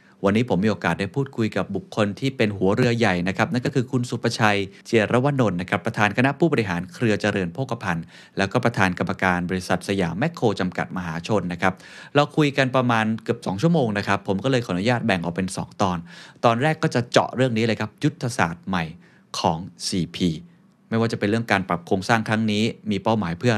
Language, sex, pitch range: Thai, male, 95-125 Hz